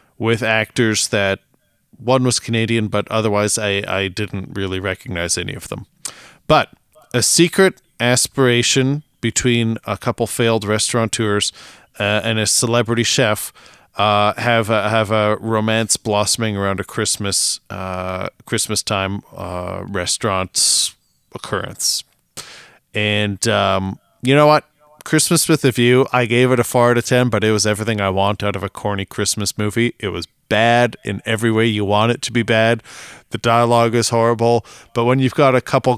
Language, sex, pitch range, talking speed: English, male, 105-125 Hz, 160 wpm